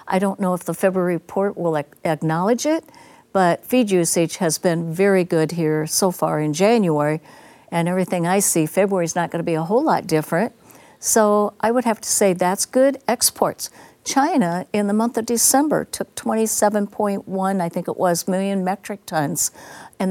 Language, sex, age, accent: English, female, 60-79, American